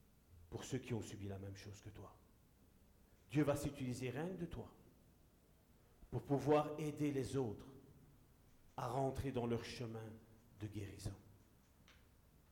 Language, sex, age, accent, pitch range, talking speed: French, male, 50-69, French, 100-155 Hz, 135 wpm